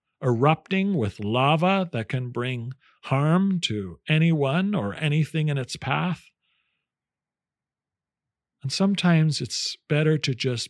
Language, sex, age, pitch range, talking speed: English, male, 50-69, 120-165 Hz, 110 wpm